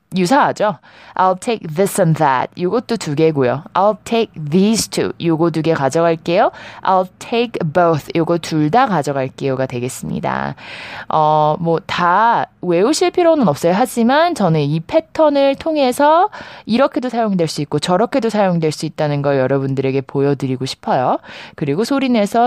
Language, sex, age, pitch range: Korean, female, 20-39, 155-230 Hz